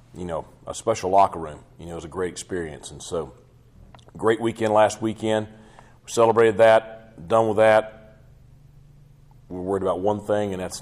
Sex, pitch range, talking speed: male, 85-105 Hz, 185 wpm